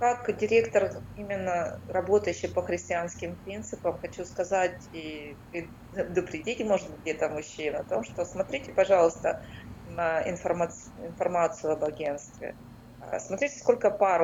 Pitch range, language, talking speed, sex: 170-215 Hz, Russian, 115 wpm, female